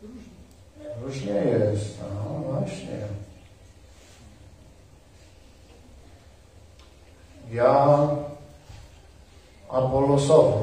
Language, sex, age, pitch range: Polish, male, 50-69, 95-140 Hz